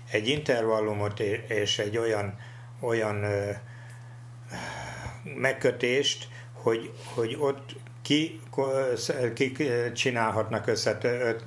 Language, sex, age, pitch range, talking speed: Hungarian, male, 60-79, 105-125 Hz, 75 wpm